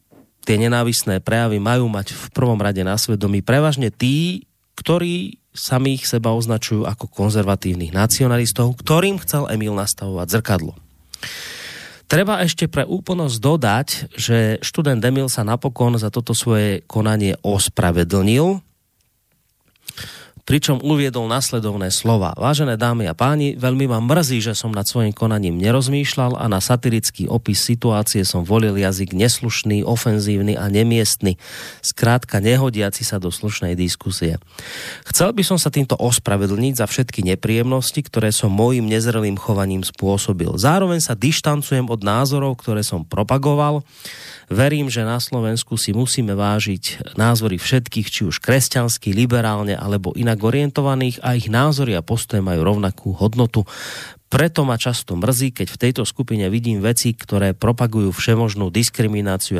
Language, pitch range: Slovak, 100-130 Hz